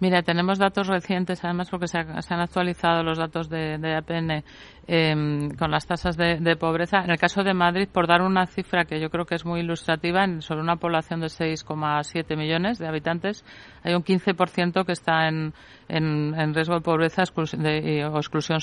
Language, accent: Spanish, Spanish